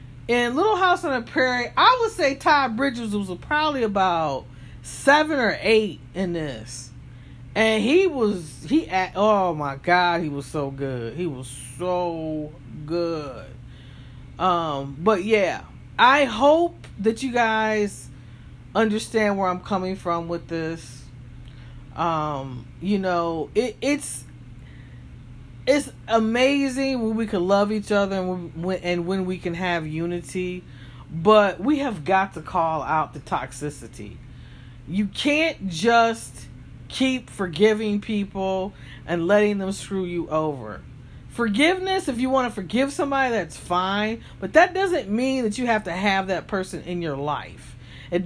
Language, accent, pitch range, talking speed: English, American, 155-225 Hz, 140 wpm